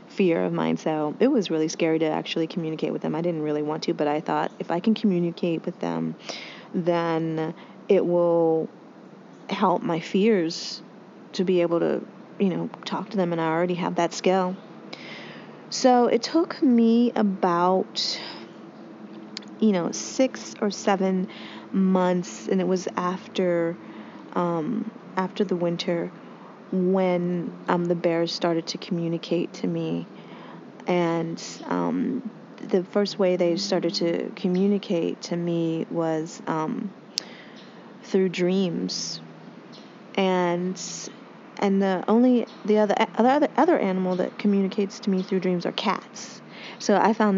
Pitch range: 170-210 Hz